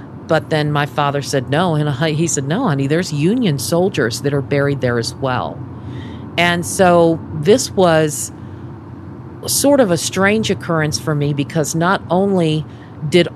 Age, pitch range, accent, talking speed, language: 50-69, 130-165 Hz, American, 155 wpm, English